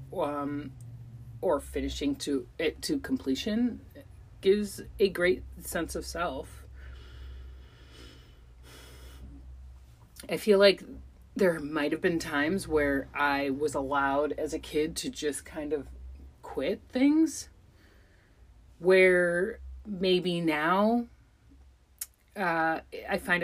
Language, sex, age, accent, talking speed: English, female, 30-49, American, 100 wpm